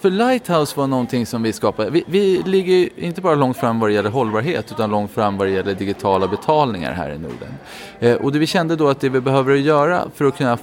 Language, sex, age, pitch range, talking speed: Swedish, male, 20-39, 105-140 Hz, 235 wpm